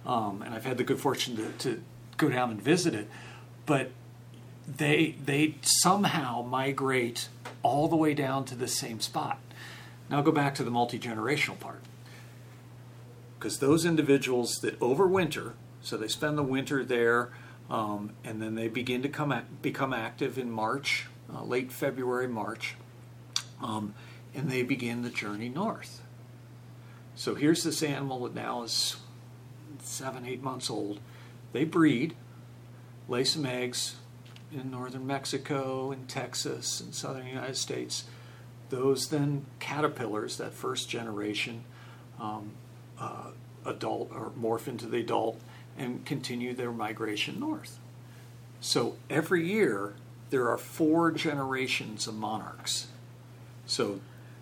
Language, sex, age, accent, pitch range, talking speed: English, male, 50-69, American, 120-135 Hz, 135 wpm